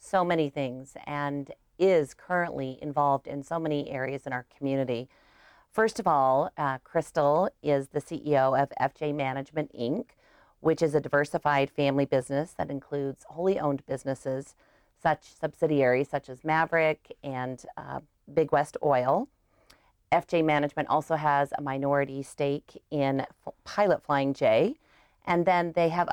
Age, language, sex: 40-59, English, female